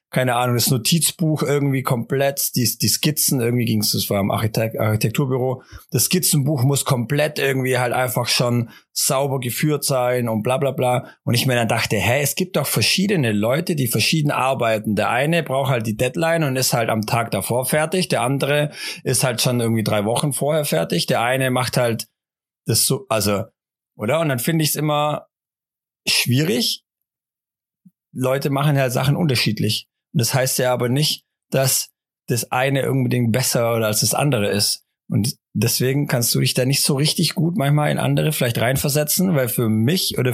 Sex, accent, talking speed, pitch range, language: male, German, 185 wpm, 120-150 Hz, German